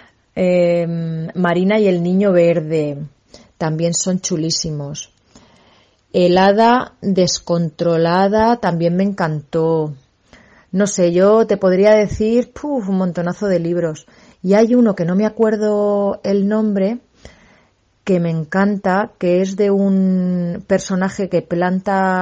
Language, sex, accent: Spanish, female, Spanish